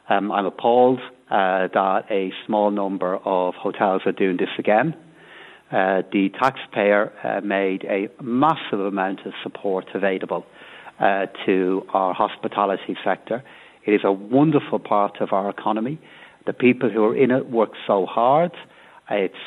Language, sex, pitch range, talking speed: English, male, 100-115 Hz, 150 wpm